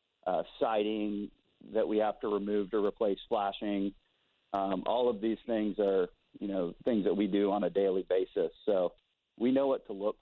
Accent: American